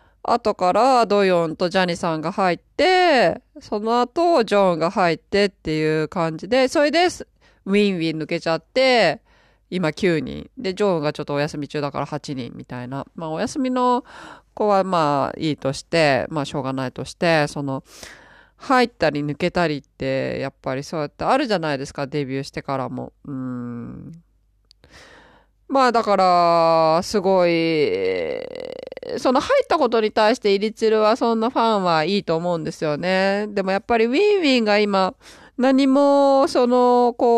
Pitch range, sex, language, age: 160-235 Hz, female, Japanese, 20-39